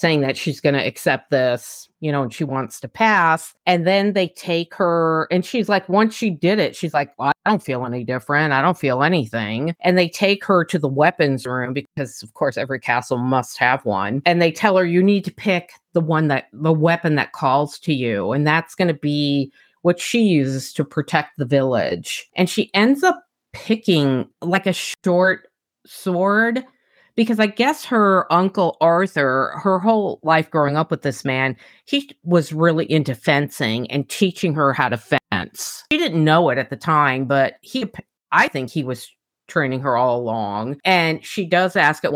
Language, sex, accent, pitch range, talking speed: English, female, American, 140-185 Hz, 195 wpm